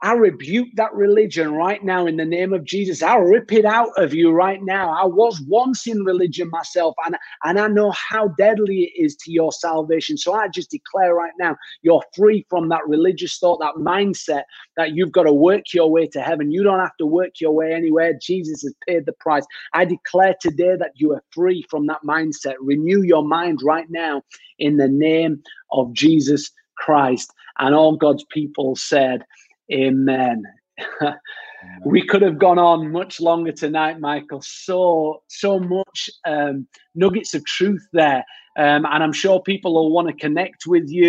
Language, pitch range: English, 150-190 Hz